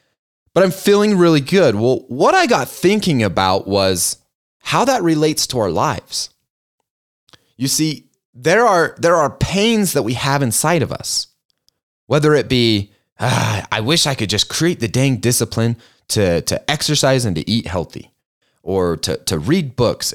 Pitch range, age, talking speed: 110-160 Hz, 30-49, 165 wpm